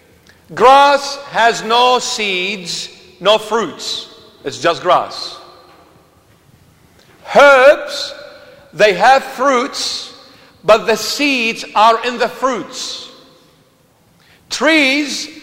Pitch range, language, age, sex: 185-250 Hz, English, 50-69, male